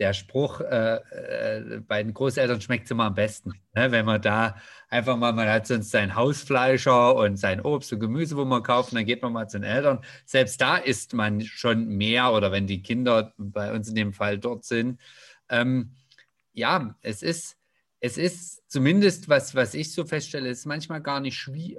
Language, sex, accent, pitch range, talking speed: German, male, German, 115-145 Hz, 200 wpm